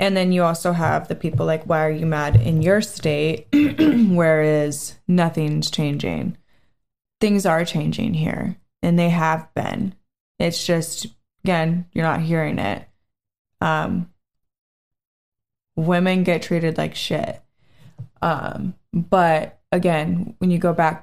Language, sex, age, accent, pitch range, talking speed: English, female, 20-39, American, 155-180 Hz, 130 wpm